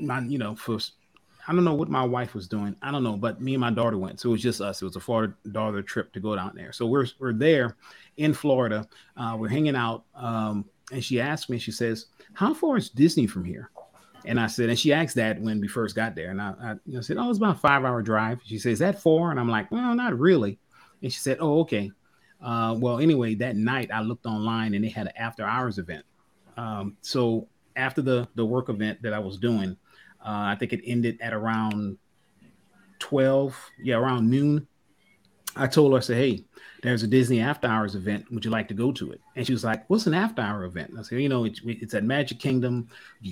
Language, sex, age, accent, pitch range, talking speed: English, male, 30-49, American, 110-135 Hz, 240 wpm